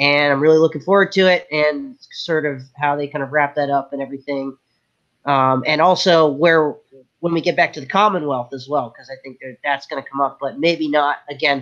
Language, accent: English, American